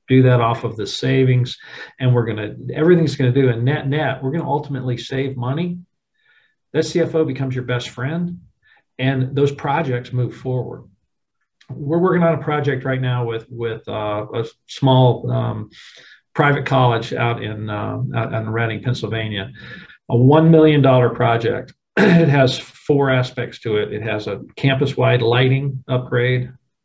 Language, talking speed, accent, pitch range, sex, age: English, 165 wpm, American, 115-135 Hz, male, 50-69